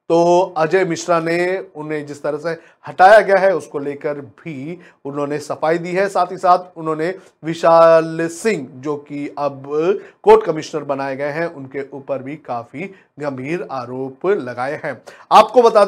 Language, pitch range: Hindi, 145-190 Hz